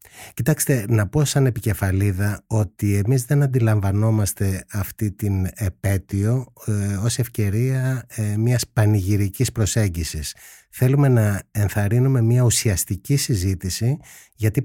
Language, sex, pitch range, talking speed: Greek, male, 100-135 Hz, 105 wpm